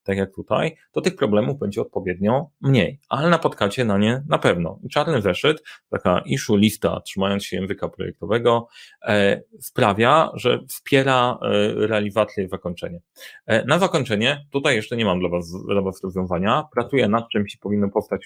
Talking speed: 170 wpm